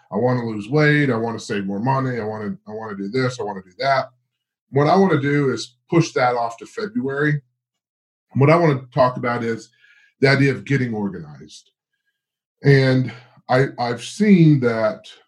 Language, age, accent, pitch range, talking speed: English, 30-49, American, 115-140 Hz, 205 wpm